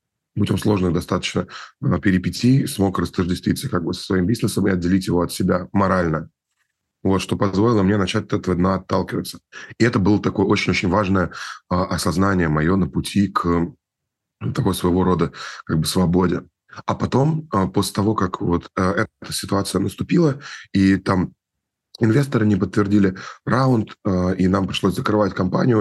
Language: Russian